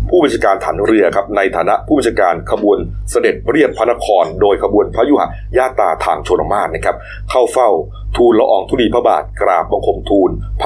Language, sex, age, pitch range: Thai, male, 30-49, 100-105 Hz